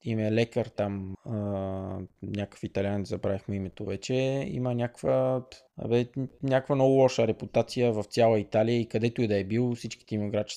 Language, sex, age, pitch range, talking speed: Bulgarian, male, 20-39, 105-125 Hz, 160 wpm